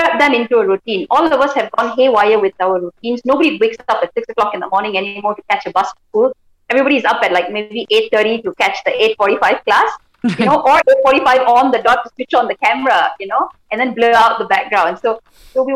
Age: 30-49